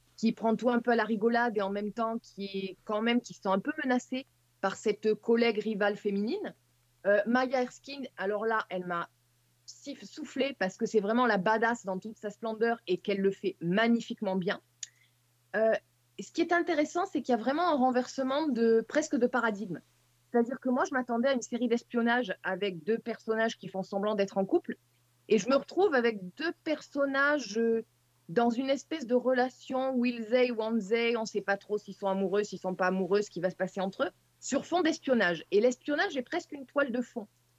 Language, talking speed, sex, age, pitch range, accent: French, 210 wpm, female, 20-39, 195-255 Hz, French